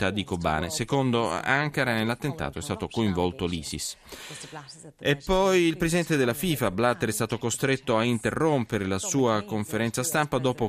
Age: 30-49